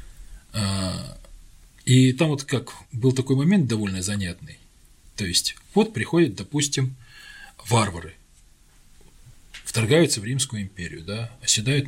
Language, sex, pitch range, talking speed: Russian, male, 100-135 Hz, 105 wpm